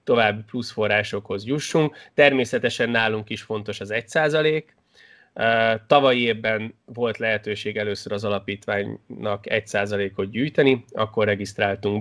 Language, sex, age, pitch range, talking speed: Hungarian, male, 20-39, 100-120 Hz, 105 wpm